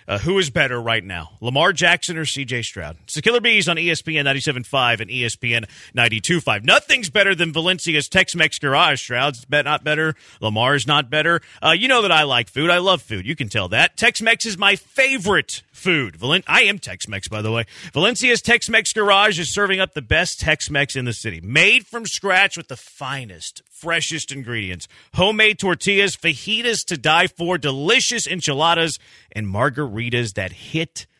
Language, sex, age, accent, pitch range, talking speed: English, male, 40-59, American, 125-180 Hz, 180 wpm